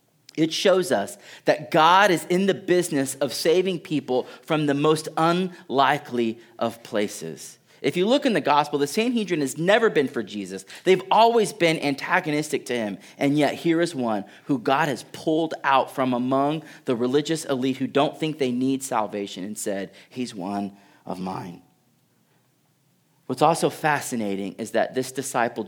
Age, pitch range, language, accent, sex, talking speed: 30-49, 115-165 Hz, English, American, male, 165 wpm